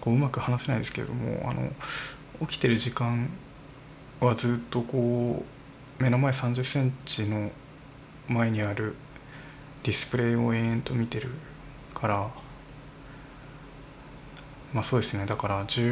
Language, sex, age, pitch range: Japanese, male, 20-39, 125-145 Hz